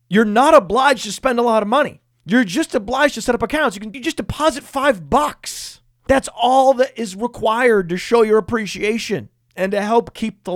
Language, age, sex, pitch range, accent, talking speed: English, 30-49, male, 150-225 Hz, American, 205 wpm